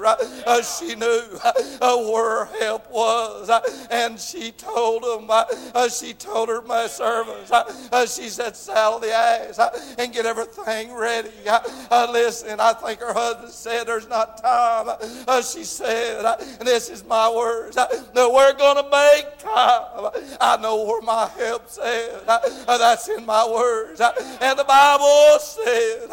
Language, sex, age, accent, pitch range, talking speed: English, male, 50-69, American, 230-255 Hz, 165 wpm